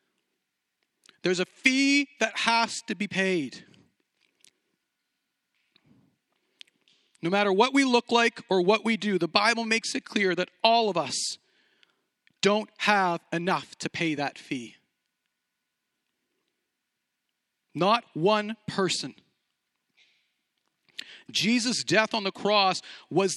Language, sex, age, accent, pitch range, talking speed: English, male, 40-59, American, 170-220 Hz, 110 wpm